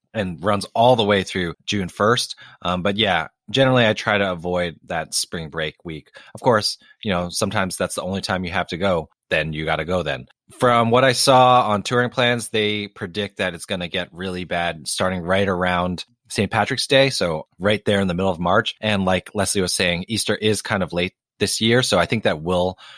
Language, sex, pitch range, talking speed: English, male, 85-110 Hz, 225 wpm